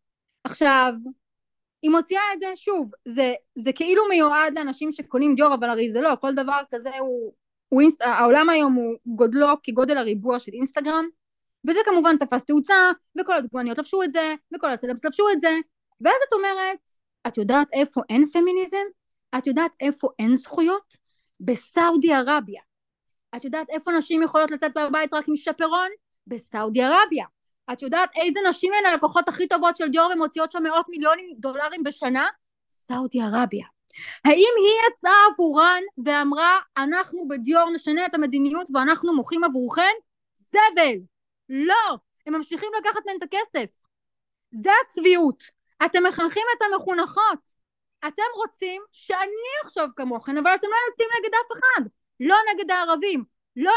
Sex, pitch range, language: female, 275-375 Hz, Hebrew